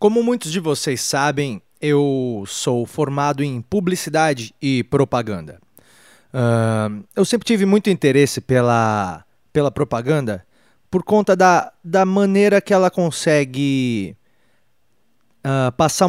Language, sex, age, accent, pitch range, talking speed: Portuguese, male, 30-49, Brazilian, 120-170 Hz, 110 wpm